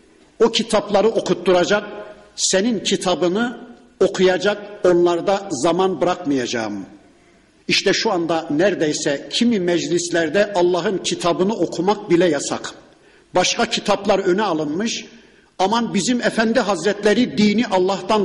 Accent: native